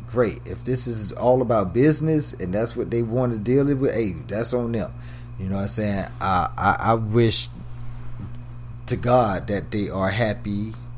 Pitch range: 105-120 Hz